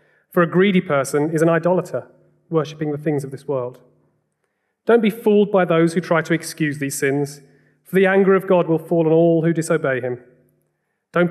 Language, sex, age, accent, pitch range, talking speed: English, male, 30-49, British, 140-180 Hz, 195 wpm